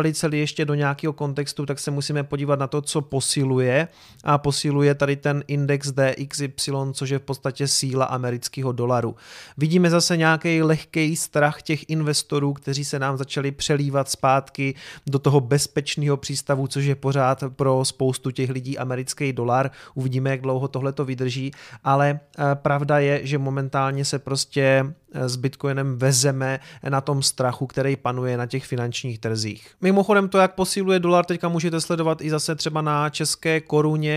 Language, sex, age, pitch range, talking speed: Czech, male, 30-49, 135-155 Hz, 160 wpm